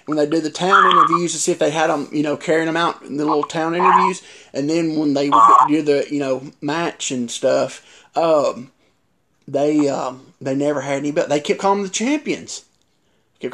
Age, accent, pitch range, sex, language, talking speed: 30-49, American, 140-170 Hz, male, English, 215 wpm